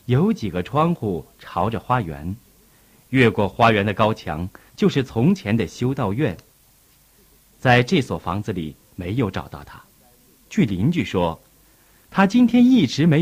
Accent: native